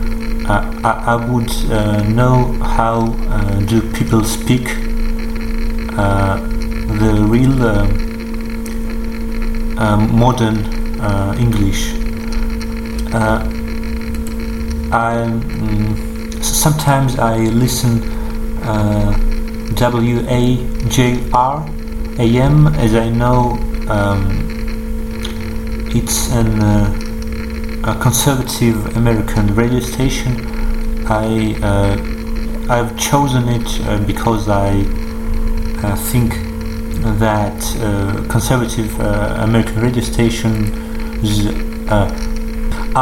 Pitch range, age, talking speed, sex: 105-115 Hz, 30-49, 85 wpm, male